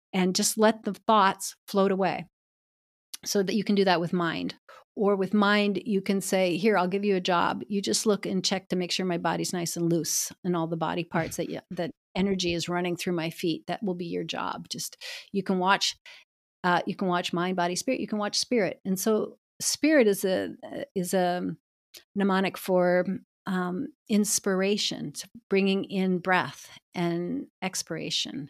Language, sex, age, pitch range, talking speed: English, female, 40-59, 175-205 Hz, 190 wpm